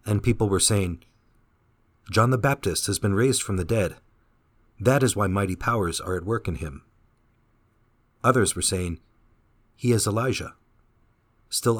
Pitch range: 95-115 Hz